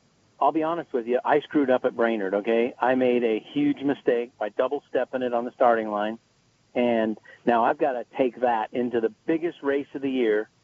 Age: 50-69